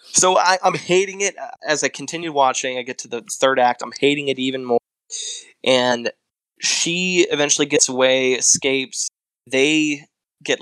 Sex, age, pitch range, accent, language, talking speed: male, 20-39, 115-140 Hz, American, English, 155 wpm